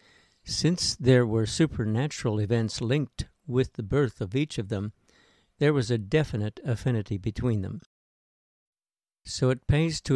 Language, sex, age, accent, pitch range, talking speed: English, male, 60-79, American, 110-130 Hz, 140 wpm